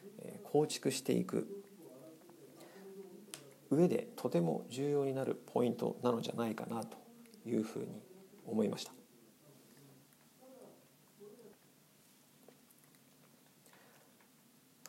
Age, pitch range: 40-59, 140-230 Hz